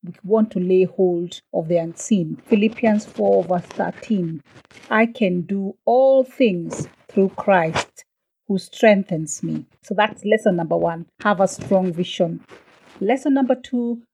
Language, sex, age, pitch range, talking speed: English, female, 40-59, 185-245 Hz, 145 wpm